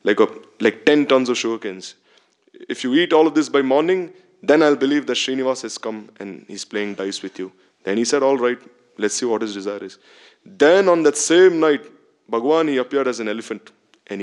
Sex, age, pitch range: male, 20-39, 110-160 Hz